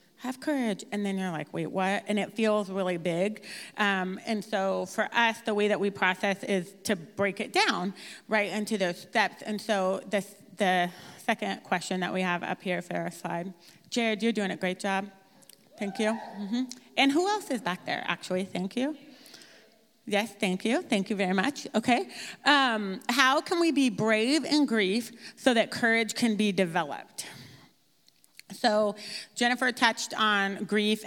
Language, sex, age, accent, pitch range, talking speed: English, female, 30-49, American, 180-220 Hz, 175 wpm